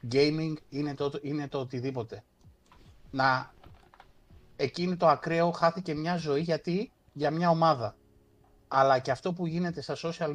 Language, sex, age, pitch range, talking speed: Greek, male, 30-49, 125-160 Hz, 140 wpm